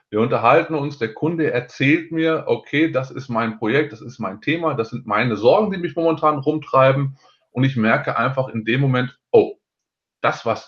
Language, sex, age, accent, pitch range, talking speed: German, male, 20-39, German, 115-155 Hz, 190 wpm